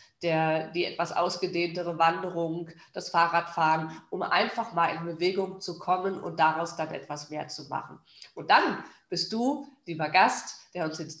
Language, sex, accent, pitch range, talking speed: German, female, German, 170-200 Hz, 160 wpm